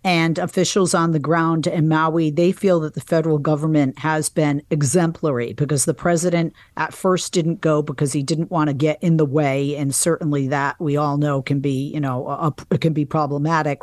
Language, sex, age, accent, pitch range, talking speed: English, female, 50-69, American, 145-170 Hz, 195 wpm